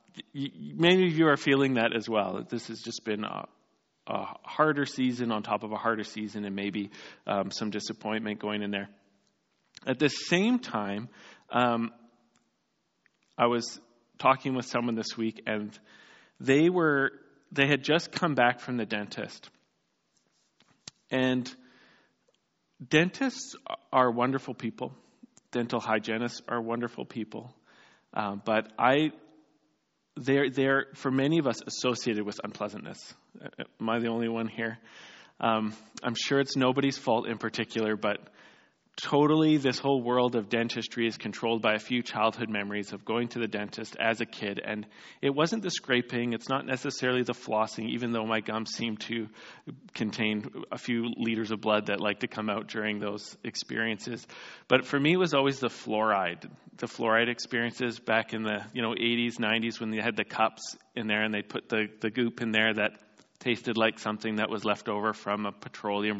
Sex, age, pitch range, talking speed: male, 40-59, 110-130 Hz, 170 wpm